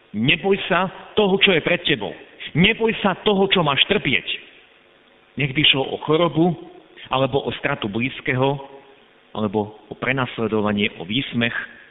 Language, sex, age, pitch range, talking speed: Slovak, male, 50-69, 110-160 Hz, 130 wpm